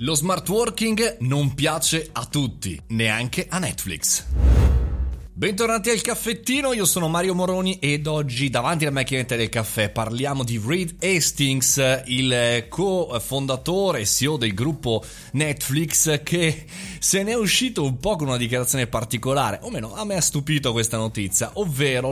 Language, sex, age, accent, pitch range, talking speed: Italian, male, 30-49, native, 115-155 Hz, 150 wpm